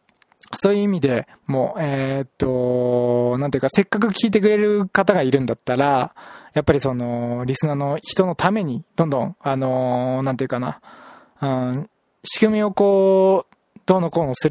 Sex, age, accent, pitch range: male, 20-39, native, 130-180 Hz